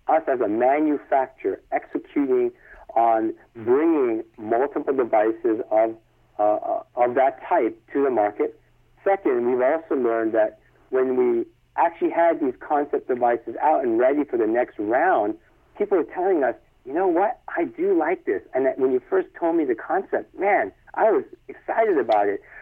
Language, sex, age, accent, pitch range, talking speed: English, male, 50-69, American, 330-380 Hz, 165 wpm